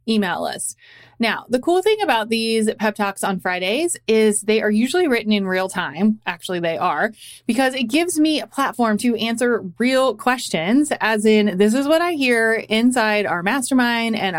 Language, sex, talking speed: English, female, 185 wpm